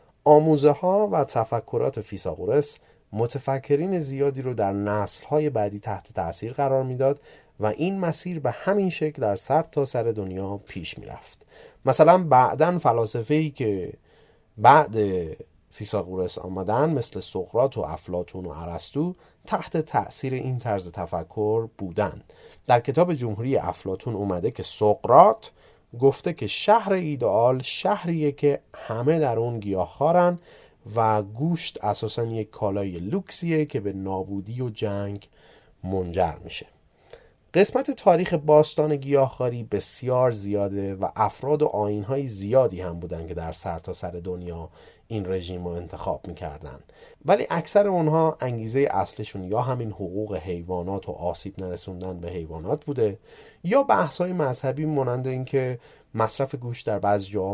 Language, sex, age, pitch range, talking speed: Persian, male, 30-49, 95-150 Hz, 130 wpm